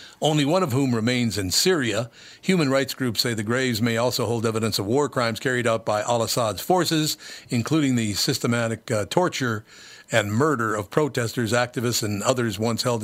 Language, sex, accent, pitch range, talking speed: English, male, American, 110-130 Hz, 180 wpm